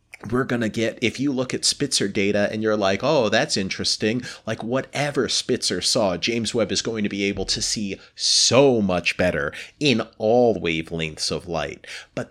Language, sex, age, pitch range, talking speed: English, male, 30-49, 105-130 Hz, 185 wpm